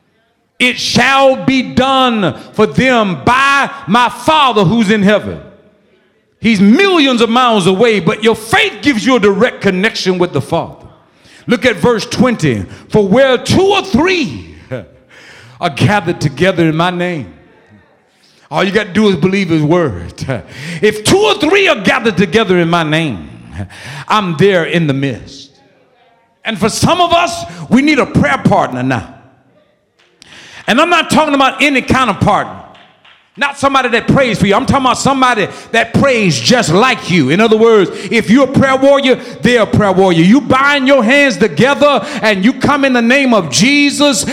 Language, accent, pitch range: English, American, 190-275 Hz